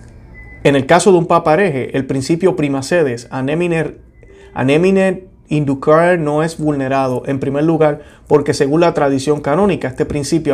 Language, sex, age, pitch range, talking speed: Spanish, male, 30-49, 130-165 Hz, 140 wpm